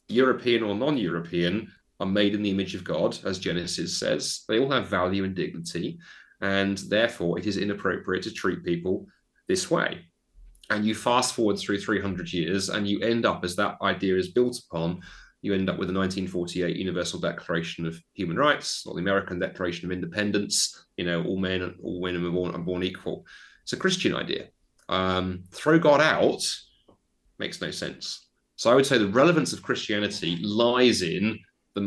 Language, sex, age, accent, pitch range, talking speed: English, male, 30-49, British, 90-105 Hz, 180 wpm